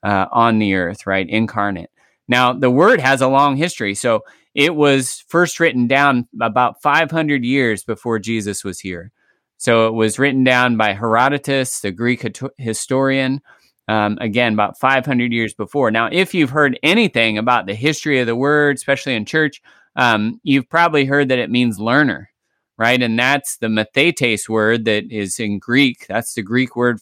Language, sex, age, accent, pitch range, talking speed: English, male, 30-49, American, 120-155 Hz, 170 wpm